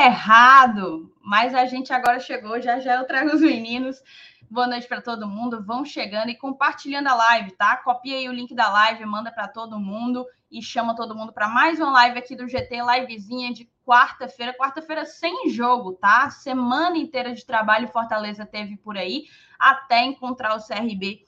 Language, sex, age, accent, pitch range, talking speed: Portuguese, female, 10-29, Brazilian, 230-280 Hz, 180 wpm